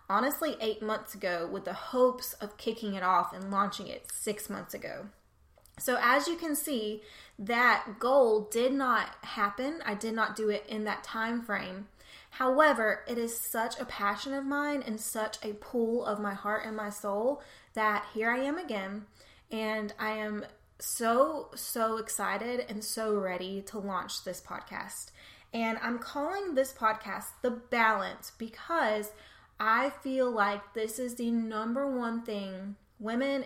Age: 20-39